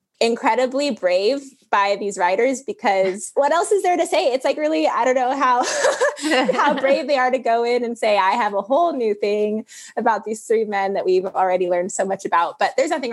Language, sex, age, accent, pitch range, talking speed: English, female, 20-39, American, 180-240 Hz, 220 wpm